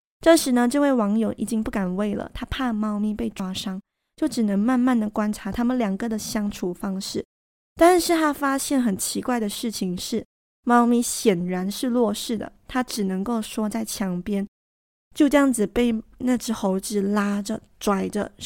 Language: Chinese